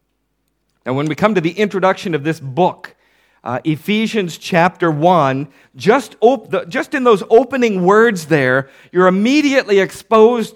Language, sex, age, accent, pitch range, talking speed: English, male, 50-69, American, 160-215 Hz, 135 wpm